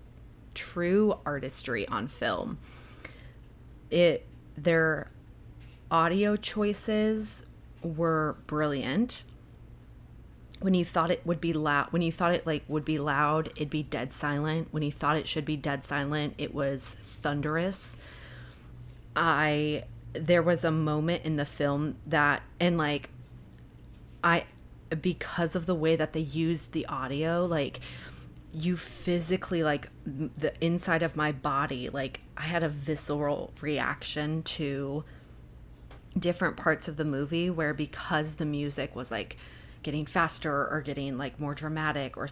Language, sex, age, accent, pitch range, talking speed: English, female, 30-49, American, 140-165 Hz, 135 wpm